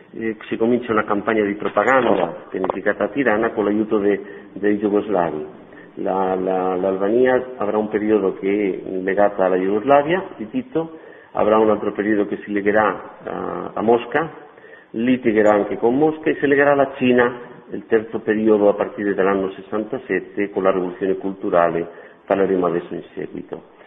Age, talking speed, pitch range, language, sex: 50-69, 150 wpm, 100-120 Hz, Italian, male